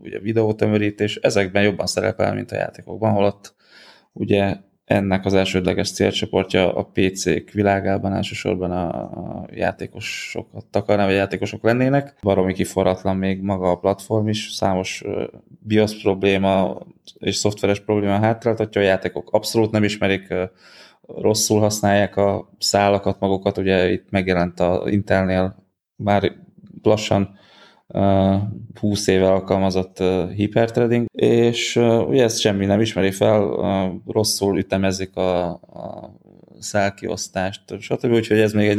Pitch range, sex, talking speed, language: 95-105 Hz, male, 115 wpm, Hungarian